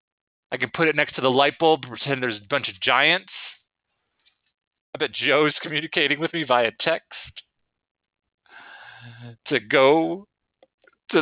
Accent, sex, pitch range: American, male, 115-165 Hz